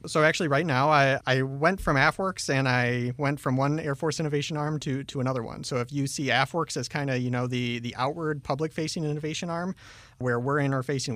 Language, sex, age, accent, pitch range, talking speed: English, male, 30-49, American, 120-140 Hz, 220 wpm